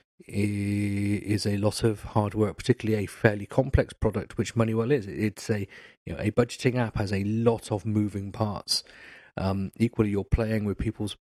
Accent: British